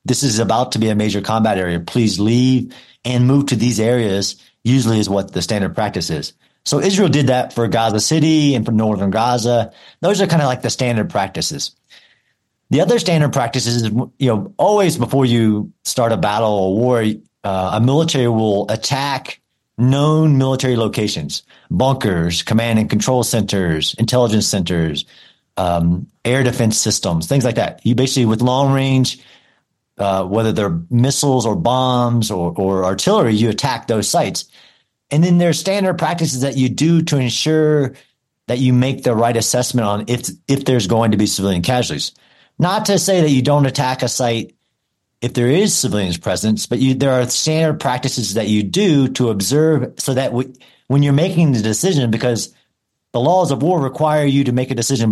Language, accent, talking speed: English, American, 180 wpm